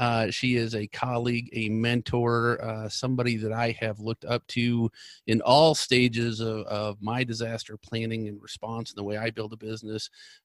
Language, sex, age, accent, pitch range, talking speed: English, male, 40-59, American, 110-120 Hz, 185 wpm